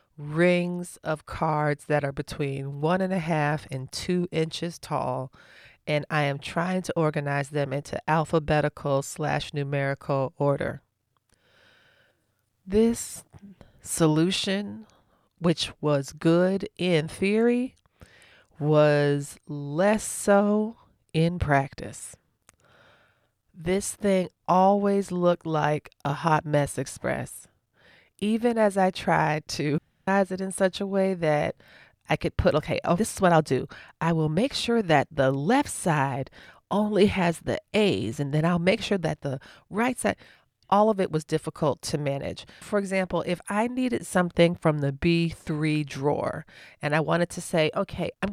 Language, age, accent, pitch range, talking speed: English, 30-49, American, 150-190 Hz, 140 wpm